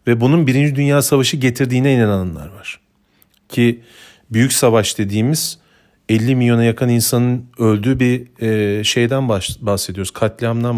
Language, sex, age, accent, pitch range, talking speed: Turkish, male, 40-59, native, 115-140 Hz, 115 wpm